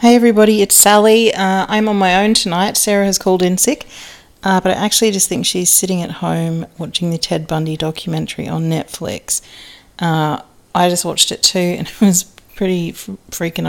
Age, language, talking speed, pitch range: 40-59, English, 190 wpm, 155-185 Hz